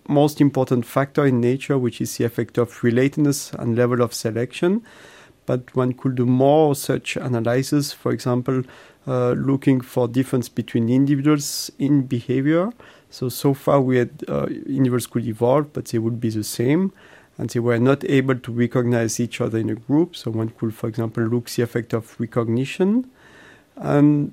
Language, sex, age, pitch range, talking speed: English, male, 40-59, 120-140 Hz, 175 wpm